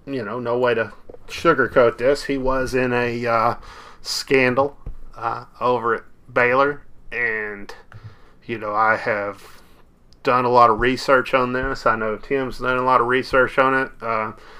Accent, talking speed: American, 165 wpm